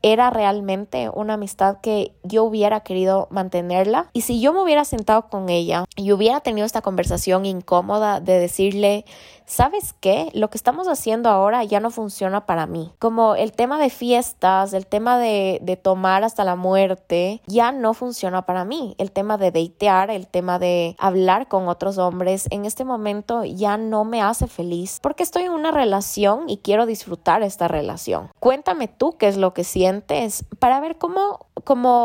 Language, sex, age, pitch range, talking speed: Spanish, female, 20-39, 190-250 Hz, 180 wpm